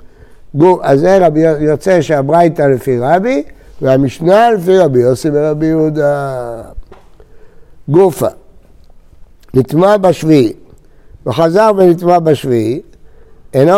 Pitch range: 140-195 Hz